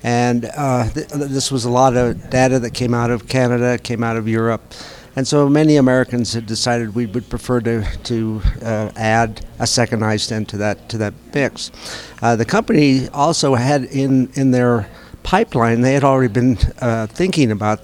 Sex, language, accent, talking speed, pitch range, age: male, English, American, 185 wpm, 115-130 Hz, 60-79